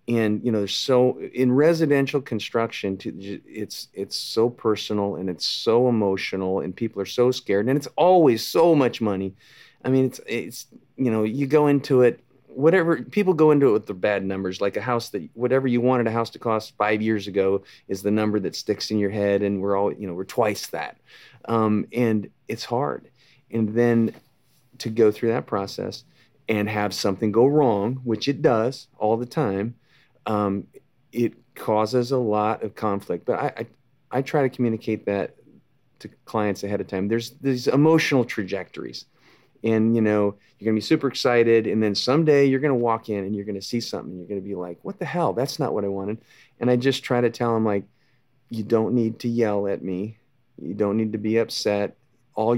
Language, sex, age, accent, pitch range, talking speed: English, male, 40-59, American, 105-125 Hz, 205 wpm